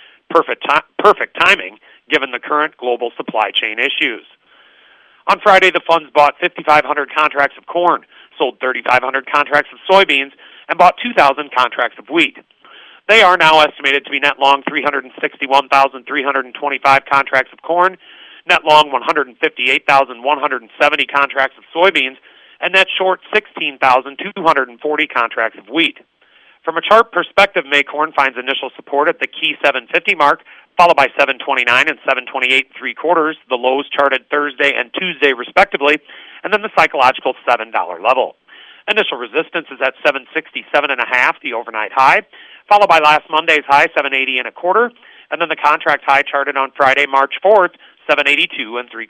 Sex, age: male, 40-59